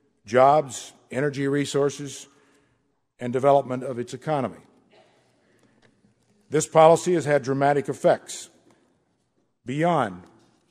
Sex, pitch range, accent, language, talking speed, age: male, 125-145 Hz, American, English, 85 wpm, 50-69